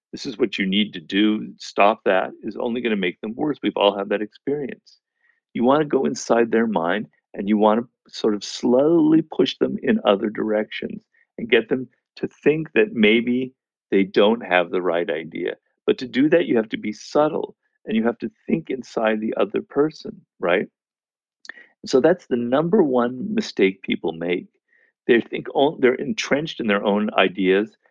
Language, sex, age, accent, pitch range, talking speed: English, male, 50-69, American, 100-150 Hz, 190 wpm